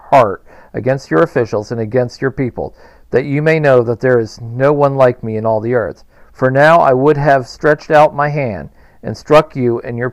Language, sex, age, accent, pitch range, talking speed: English, male, 50-69, American, 120-140 Hz, 220 wpm